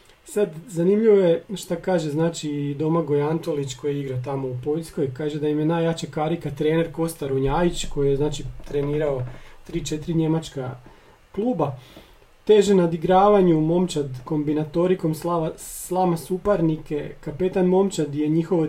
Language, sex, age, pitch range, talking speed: Croatian, male, 40-59, 145-170 Hz, 130 wpm